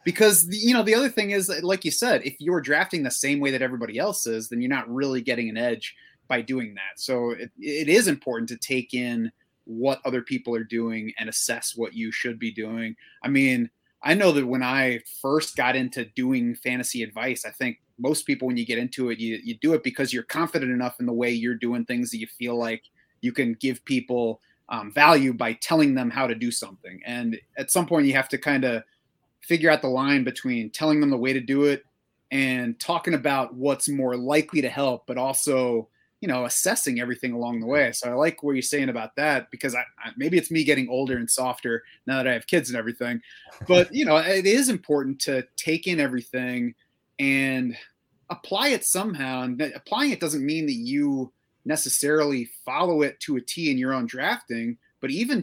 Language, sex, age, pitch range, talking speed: English, male, 30-49, 120-150 Hz, 215 wpm